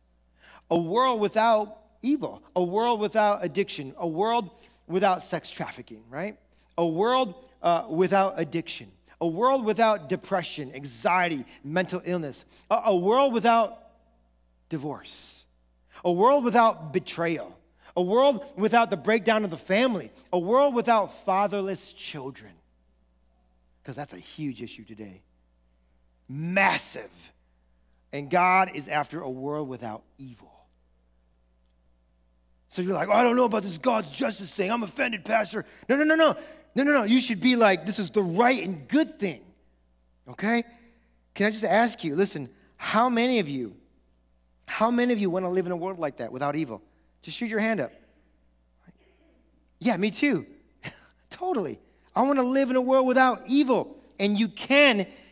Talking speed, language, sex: 155 wpm, English, male